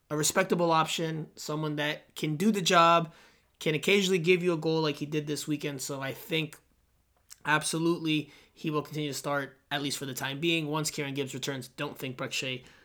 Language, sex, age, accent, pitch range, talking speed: English, male, 20-39, American, 135-170 Hz, 195 wpm